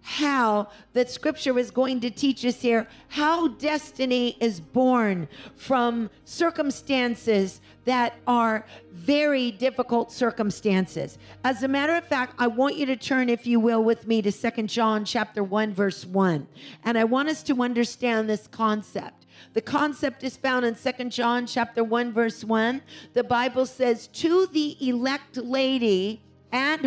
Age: 50-69